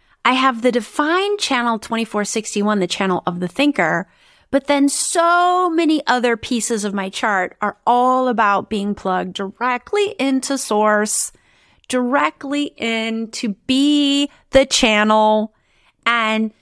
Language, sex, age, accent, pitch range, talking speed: English, female, 30-49, American, 205-280 Hz, 125 wpm